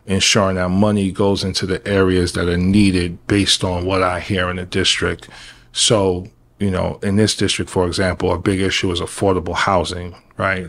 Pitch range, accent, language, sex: 95-105 Hz, American, English, male